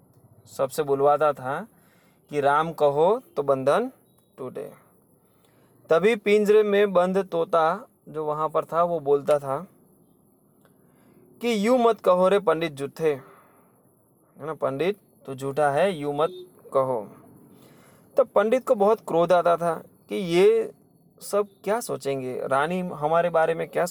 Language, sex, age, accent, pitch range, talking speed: Hindi, male, 20-39, native, 145-200 Hz, 135 wpm